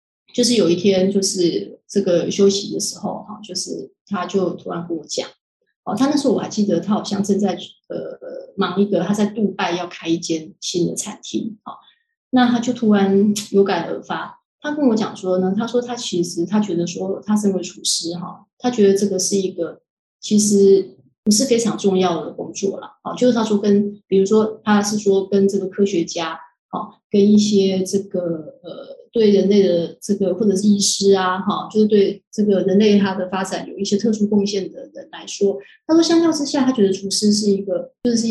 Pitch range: 190-215 Hz